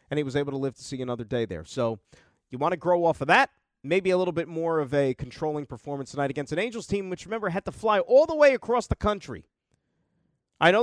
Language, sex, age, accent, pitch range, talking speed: English, male, 40-59, American, 135-190 Hz, 255 wpm